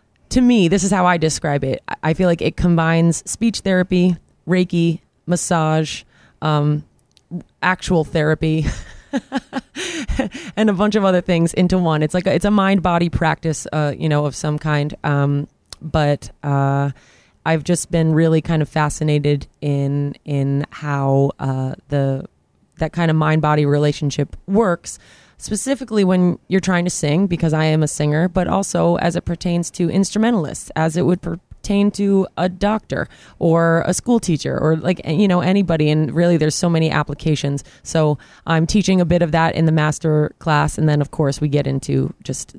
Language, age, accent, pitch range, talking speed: English, 20-39, American, 150-180 Hz, 175 wpm